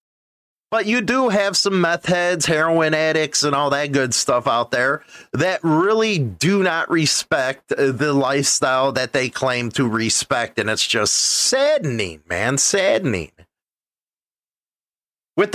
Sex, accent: male, American